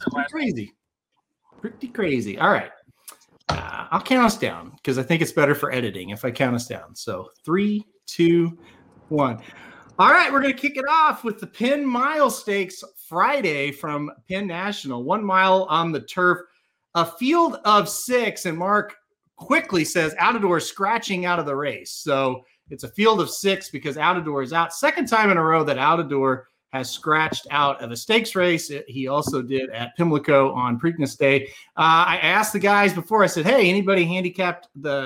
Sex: male